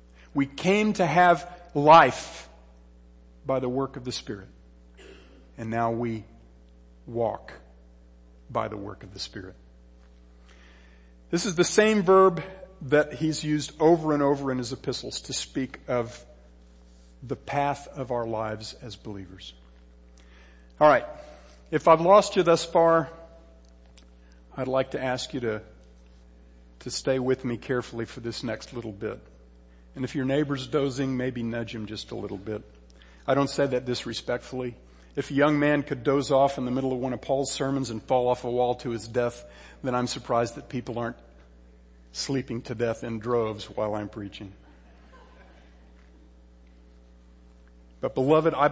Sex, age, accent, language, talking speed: male, 50-69, American, English, 155 wpm